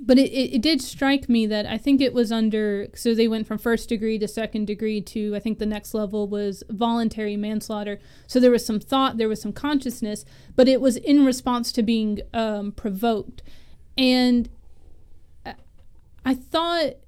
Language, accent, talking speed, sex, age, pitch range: English, American, 185 wpm, female, 20-39, 215-255 Hz